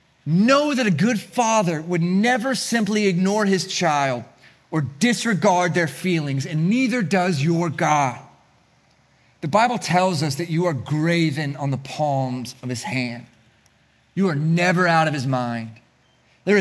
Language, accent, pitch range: English, American, 135-185 Hz